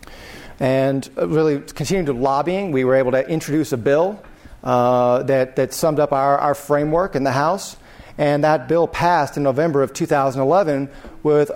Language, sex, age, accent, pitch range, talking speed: English, male, 40-59, American, 135-165 Hz, 160 wpm